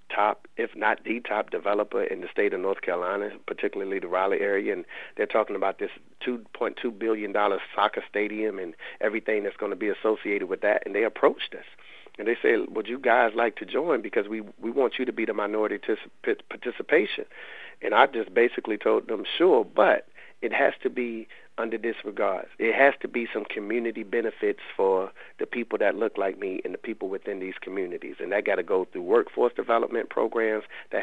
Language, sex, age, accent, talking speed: English, male, 40-59, American, 195 wpm